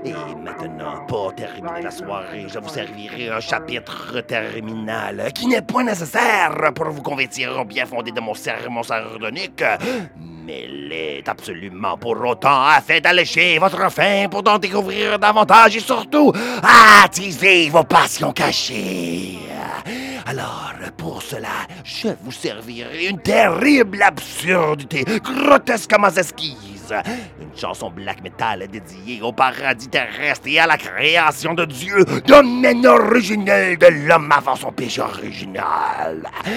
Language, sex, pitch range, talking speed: English, male, 155-235 Hz, 125 wpm